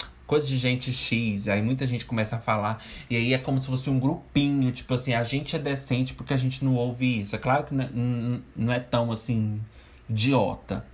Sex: male